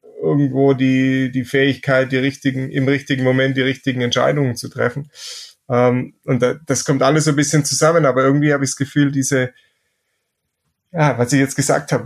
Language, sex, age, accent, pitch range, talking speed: German, male, 30-49, German, 125-140 Hz, 185 wpm